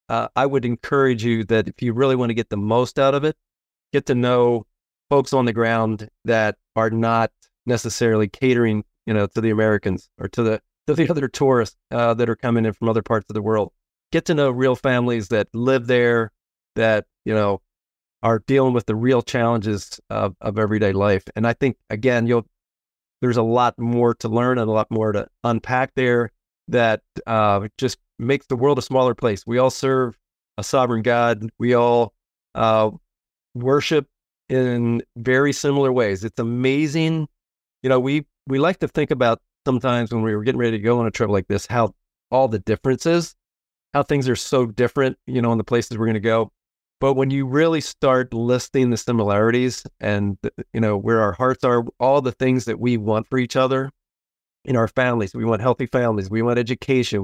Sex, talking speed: male, 200 wpm